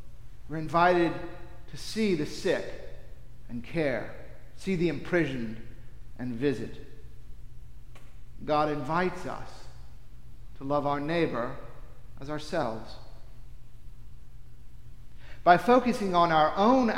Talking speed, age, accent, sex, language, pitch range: 95 wpm, 50-69, American, male, English, 140-180 Hz